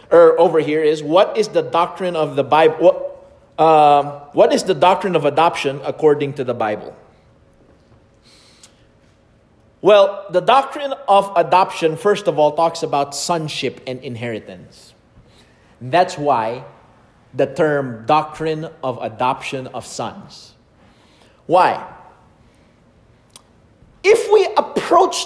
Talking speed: 115 wpm